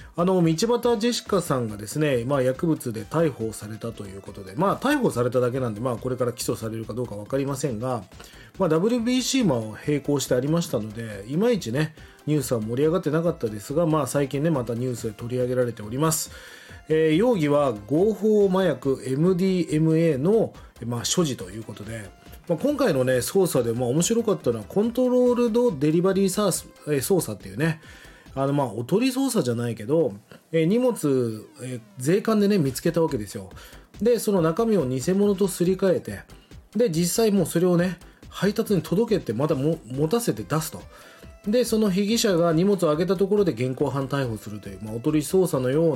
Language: Japanese